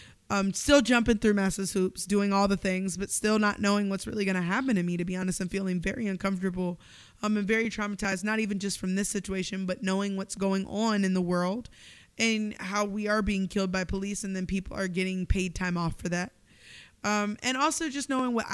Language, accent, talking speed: English, American, 230 wpm